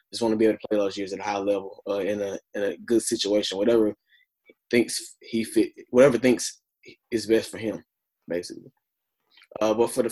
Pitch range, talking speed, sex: 105-120 Hz, 210 wpm, male